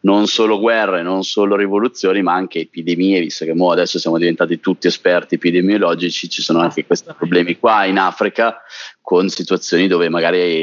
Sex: male